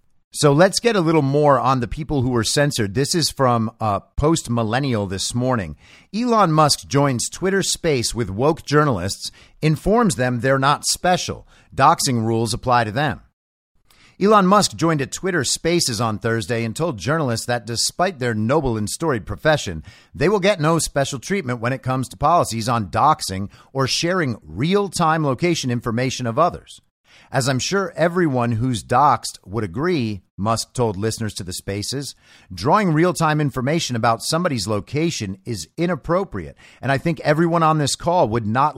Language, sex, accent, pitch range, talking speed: English, male, American, 115-160 Hz, 165 wpm